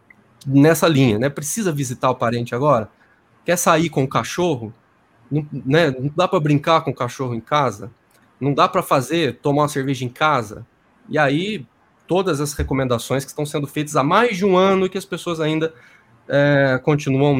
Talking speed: 185 wpm